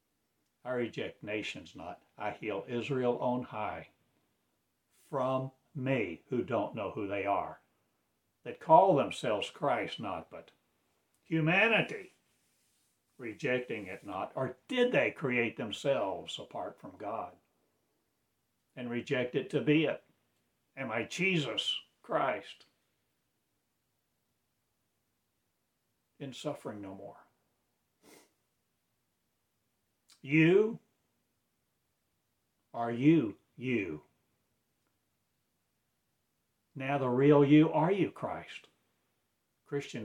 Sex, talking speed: male, 90 wpm